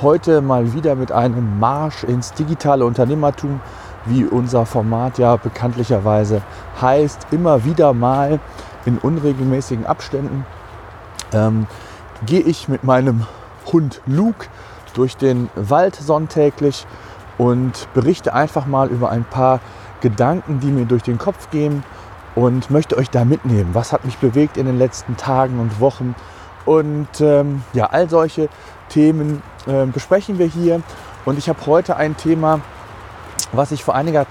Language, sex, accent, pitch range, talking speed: German, male, German, 115-150 Hz, 140 wpm